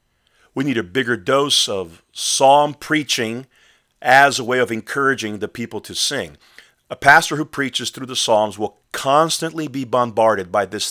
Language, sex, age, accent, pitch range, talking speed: English, male, 40-59, American, 105-135 Hz, 165 wpm